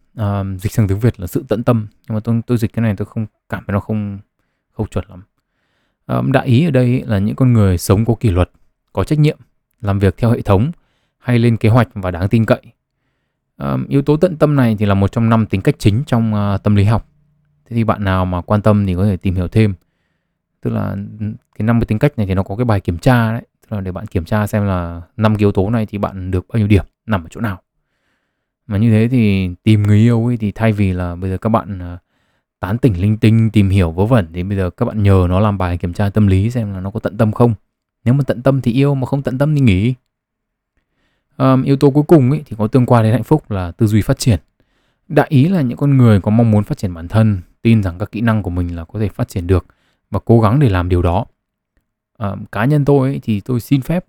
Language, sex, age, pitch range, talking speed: Vietnamese, male, 20-39, 100-125 Hz, 265 wpm